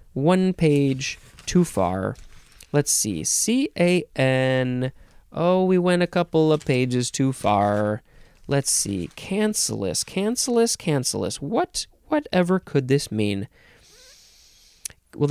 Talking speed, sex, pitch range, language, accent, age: 105 wpm, male, 120-165 Hz, English, American, 30-49